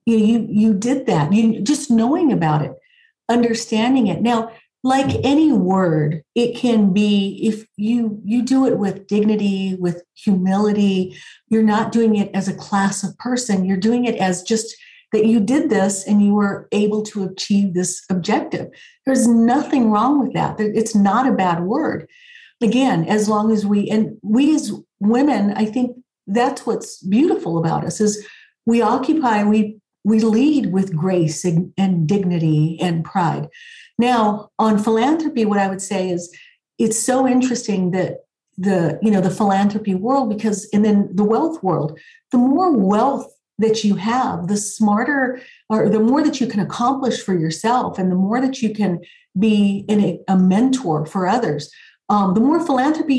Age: 40-59